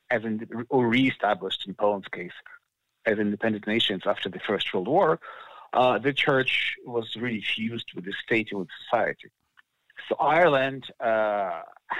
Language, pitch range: English, 105-130 Hz